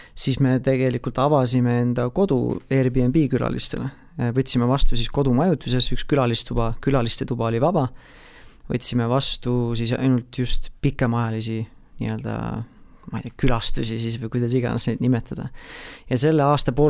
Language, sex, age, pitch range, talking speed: English, male, 30-49, 120-135 Hz, 135 wpm